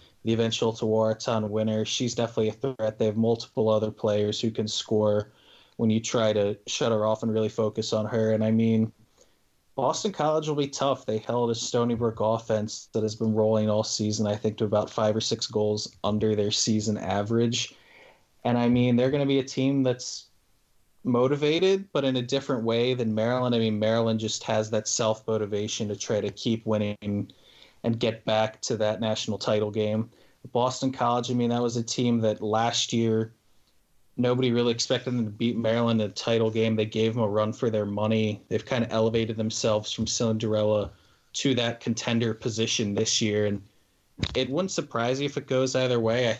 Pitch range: 110-120 Hz